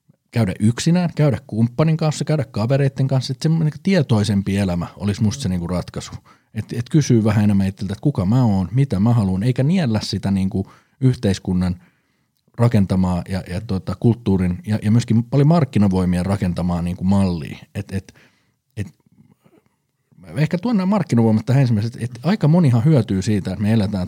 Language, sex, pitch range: Finnish, male, 95-130 Hz